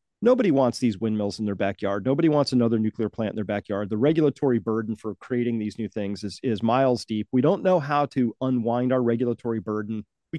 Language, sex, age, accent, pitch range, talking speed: English, male, 40-59, American, 115-145 Hz, 215 wpm